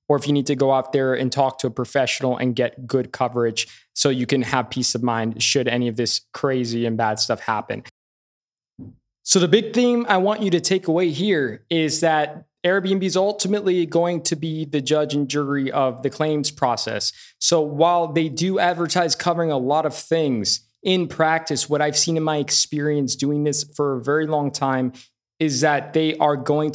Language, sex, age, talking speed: English, male, 20-39, 200 wpm